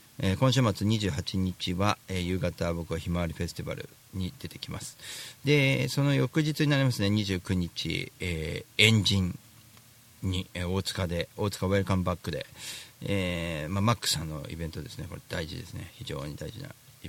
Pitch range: 90-125 Hz